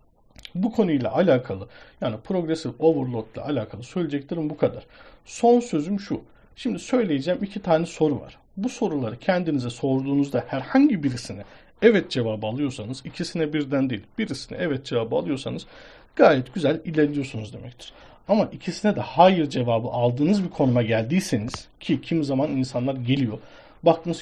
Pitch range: 125-170 Hz